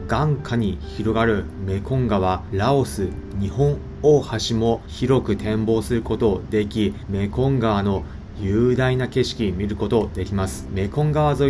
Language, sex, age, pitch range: Japanese, male, 30-49, 100-135 Hz